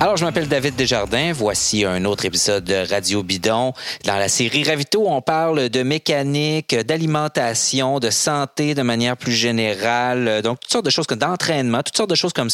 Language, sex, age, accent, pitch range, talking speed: French, male, 40-59, Canadian, 105-140 Hz, 180 wpm